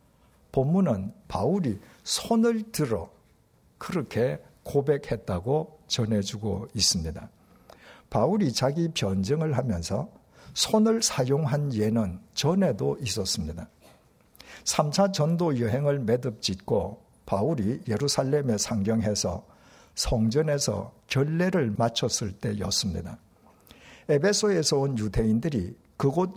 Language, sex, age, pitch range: Korean, male, 60-79, 110-155 Hz